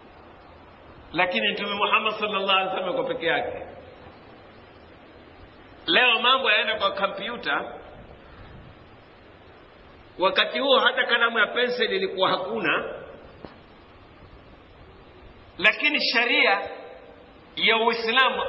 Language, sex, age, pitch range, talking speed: Swahili, male, 50-69, 190-260 Hz, 85 wpm